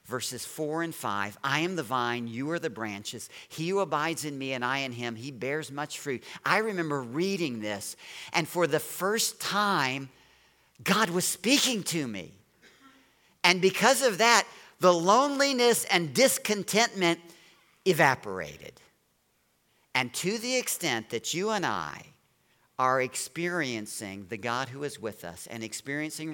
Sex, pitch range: male, 115-170 Hz